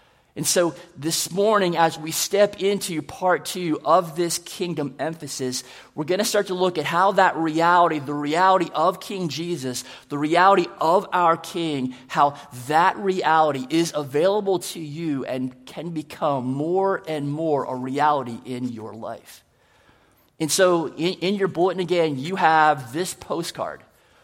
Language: English